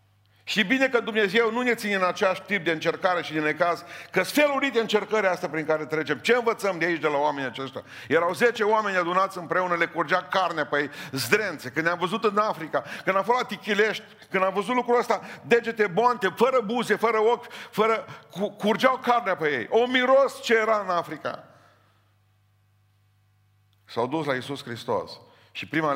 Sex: male